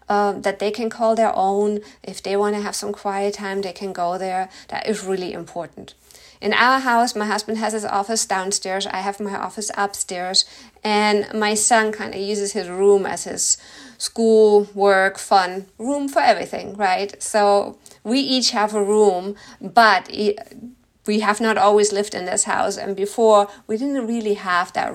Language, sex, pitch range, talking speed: English, female, 195-220 Hz, 185 wpm